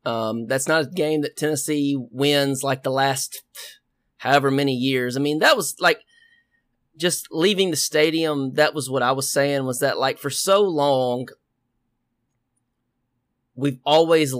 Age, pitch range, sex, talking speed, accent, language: 30-49, 130-155 Hz, male, 155 wpm, American, English